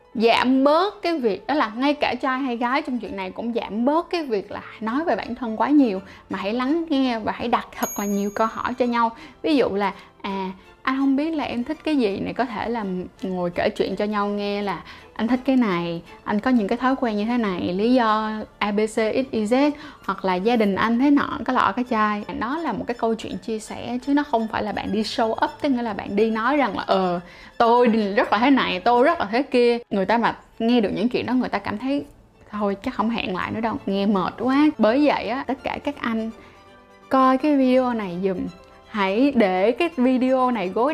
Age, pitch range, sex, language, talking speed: 10-29, 210-265 Hz, female, Vietnamese, 245 wpm